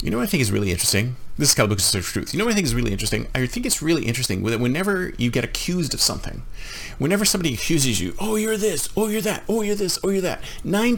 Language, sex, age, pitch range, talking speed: English, male, 40-59, 110-185 Hz, 285 wpm